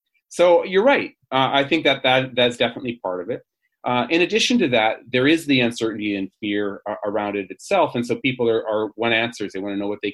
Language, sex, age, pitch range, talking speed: English, male, 30-49, 110-155 Hz, 235 wpm